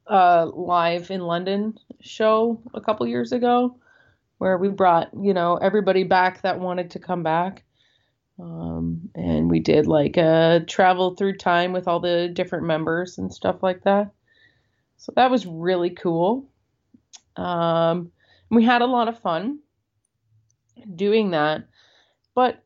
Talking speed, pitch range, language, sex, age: 145 wpm, 160-200 Hz, English, female, 30-49